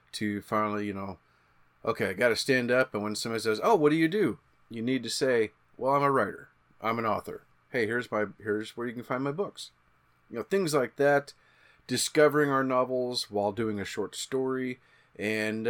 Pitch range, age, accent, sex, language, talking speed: 110-130 Hz, 30-49, American, male, English, 205 wpm